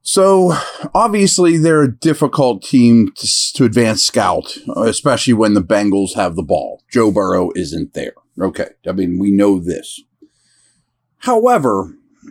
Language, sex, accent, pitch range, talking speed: English, male, American, 110-160 Hz, 135 wpm